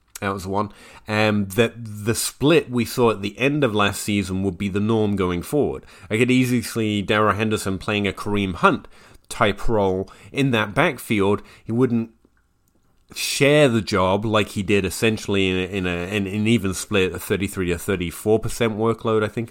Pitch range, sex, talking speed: 95-115 Hz, male, 185 wpm